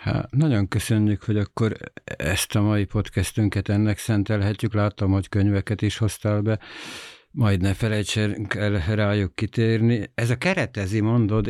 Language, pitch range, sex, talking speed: Hungarian, 95-110 Hz, male, 140 wpm